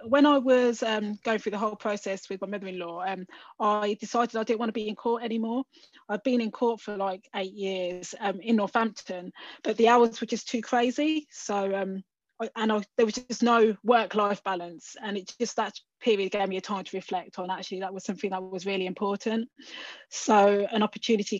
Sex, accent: female, British